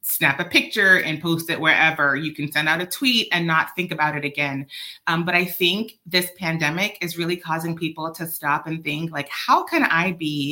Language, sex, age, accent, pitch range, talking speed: English, female, 30-49, American, 155-205 Hz, 215 wpm